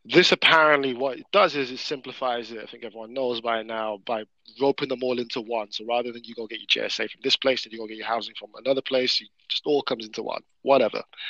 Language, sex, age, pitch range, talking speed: English, male, 20-39, 120-150 Hz, 255 wpm